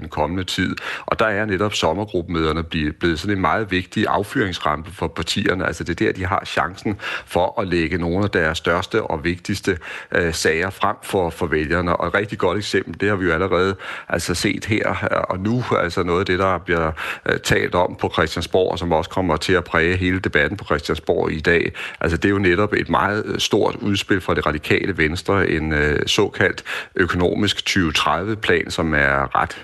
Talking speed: 190 wpm